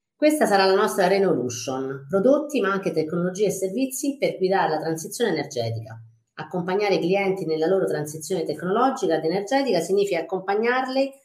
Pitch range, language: 160-215 Hz, Italian